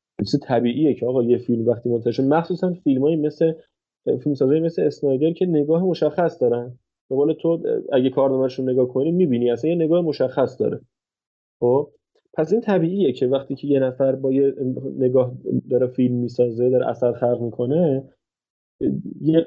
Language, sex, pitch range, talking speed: Persian, male, 120-150 Hz, 150 wpm